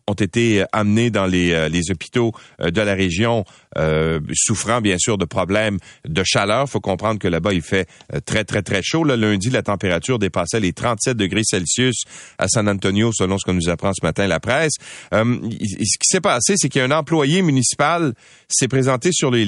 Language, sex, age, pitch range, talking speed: French, male, 40-59, 95-125 Hz, 190 wpm